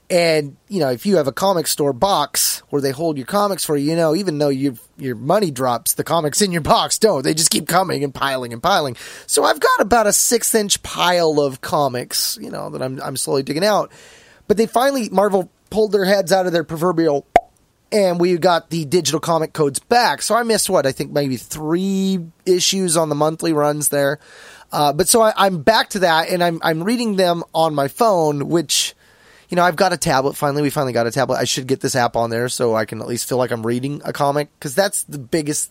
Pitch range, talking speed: 140-195 Hz, 235 wpm